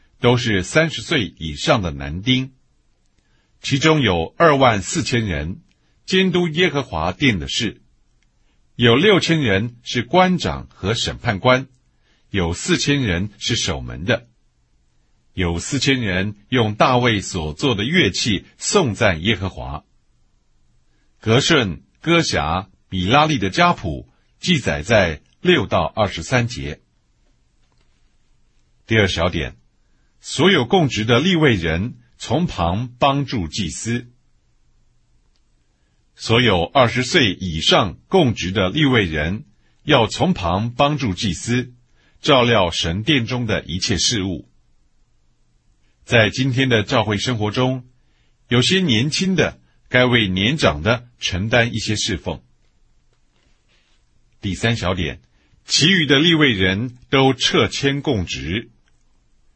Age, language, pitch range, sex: 60-79, English, 90-135 Hz, male